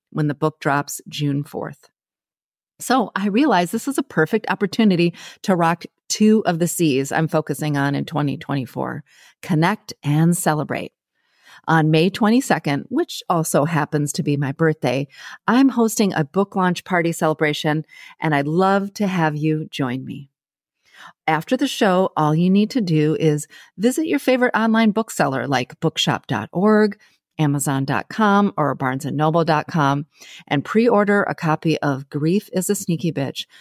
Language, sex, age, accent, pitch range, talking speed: English, female, 40-59, American, 150-200 Hz, 145 wpm